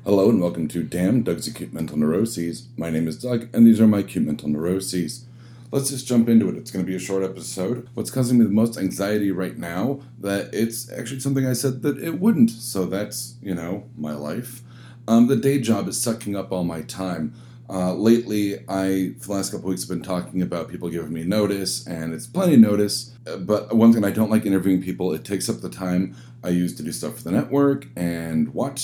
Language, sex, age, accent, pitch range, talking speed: English, male, 40-59, American, 85-115 Hz, 225 wpm